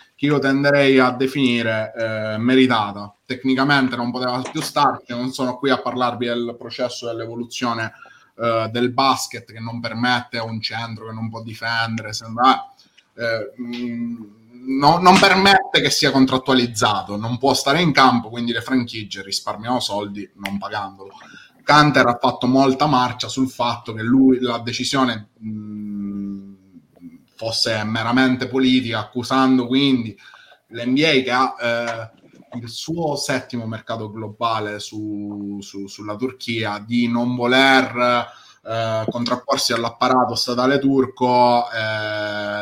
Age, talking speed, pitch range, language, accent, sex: 20-39, 130 wpm, 110-130 Hz, Italian, native, male